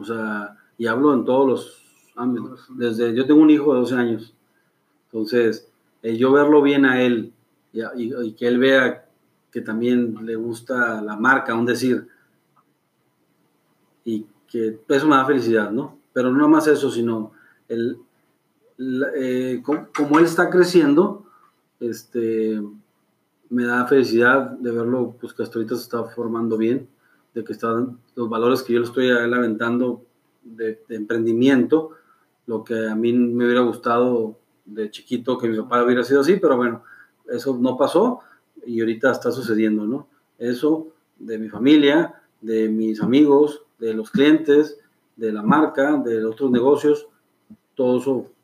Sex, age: male, 30-49